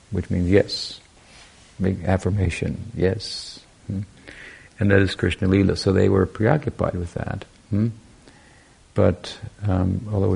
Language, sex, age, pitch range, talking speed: English, male, 50-69, 90-105 Hz, 115 wpm